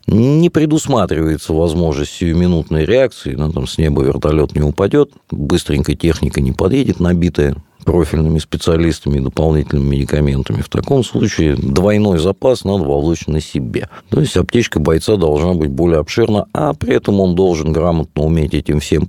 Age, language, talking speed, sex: 50-69, Russian, 150 wpm, male